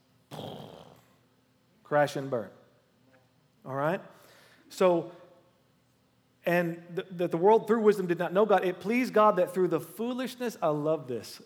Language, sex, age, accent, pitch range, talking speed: English, male, 40-59, American, 150-200 Hz, 135 wpm